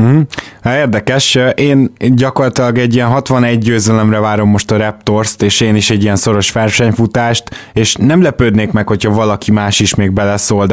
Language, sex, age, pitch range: Hungarian, male, 20-39, 100-115 Hz